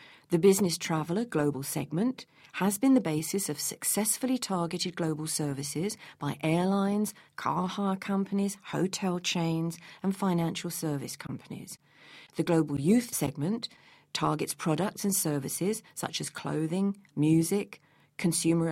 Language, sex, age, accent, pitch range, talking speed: English, female, 50-69, British, 150-195 Hz, 120 wpm